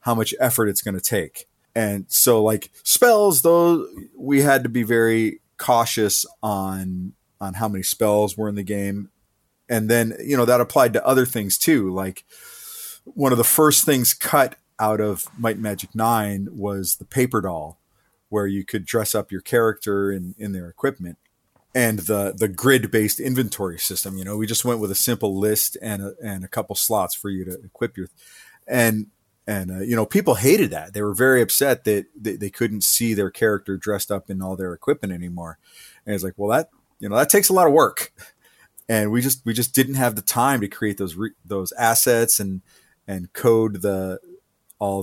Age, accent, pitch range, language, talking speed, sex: 30-49, American, 95-120 Hz, English, 200 wpm, male